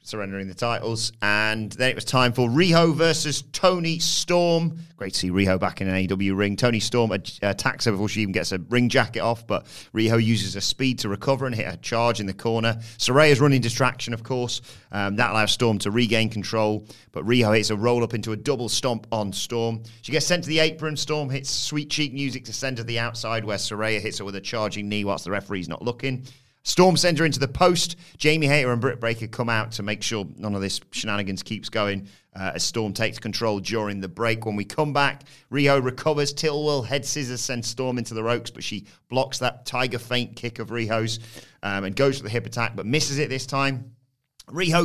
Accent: British